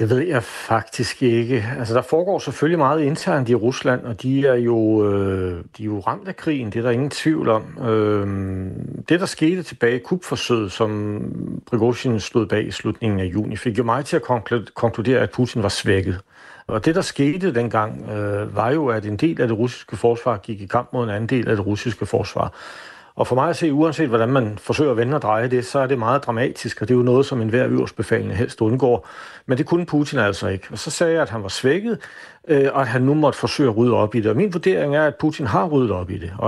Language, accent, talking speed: Danish, native, 245 wpm